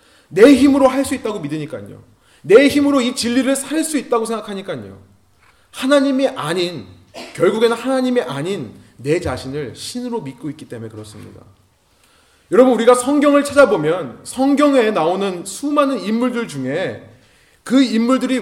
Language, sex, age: Korean, male, 30-49